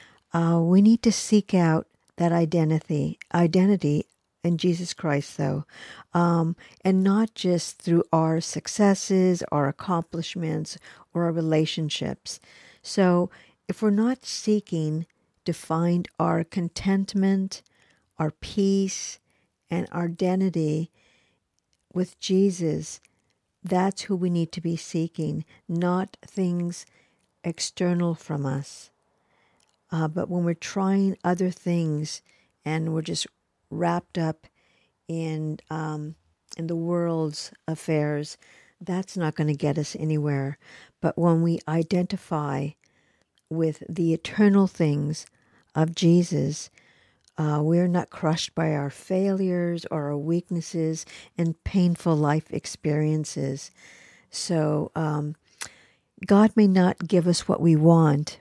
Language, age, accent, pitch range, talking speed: English, 50-69, American, 155-185 Hz, 115 wpm